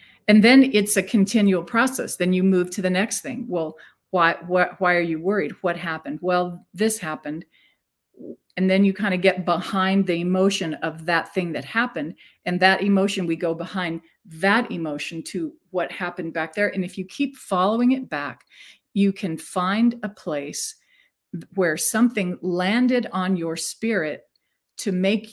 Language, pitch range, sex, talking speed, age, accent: English, 175-210 Hz, female, 170 wpm, 50-69, American